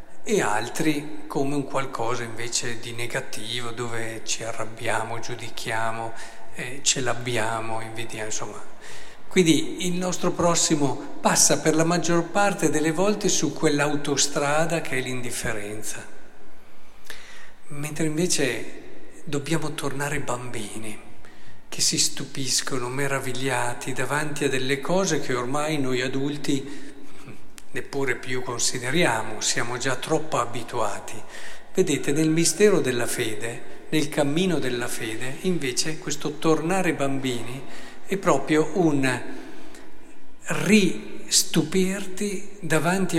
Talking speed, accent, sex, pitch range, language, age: 105 wpm, native, male, 125-165 Hz, Italian, 50-69